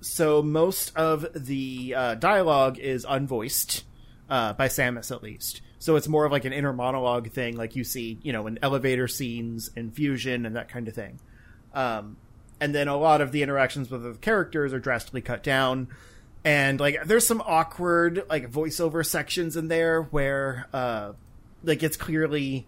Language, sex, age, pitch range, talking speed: English, male, 30-49, 120-150 Hz, 175 wpm